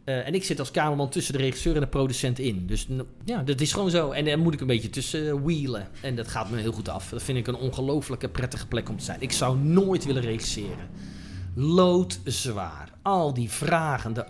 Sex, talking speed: male, 235 wpm